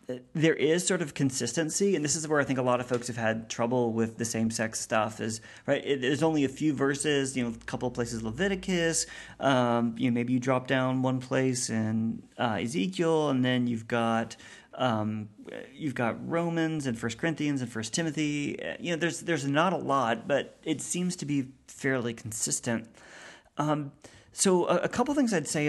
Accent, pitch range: American, 125-165 Hz